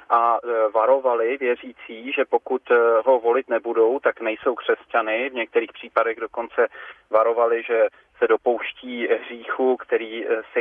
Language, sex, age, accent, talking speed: Czech, male, 30-49, native, 125 wpm